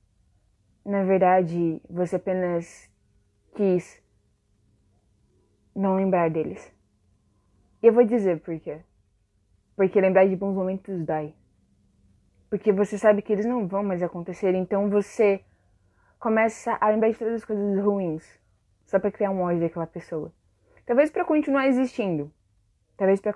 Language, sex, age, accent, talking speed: Portuguese, female, 20-39, Brazilian, 135 wpm